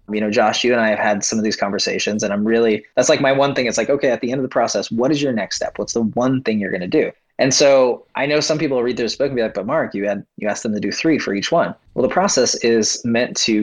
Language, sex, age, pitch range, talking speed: English, male, 20-39, 110-135 Hz, 320 wpm